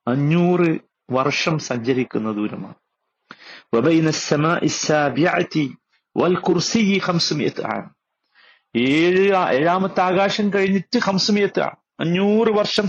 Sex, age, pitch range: male, 50-69, 155-215 Hz